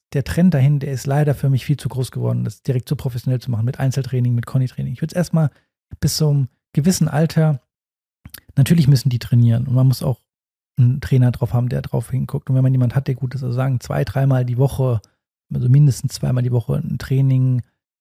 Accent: German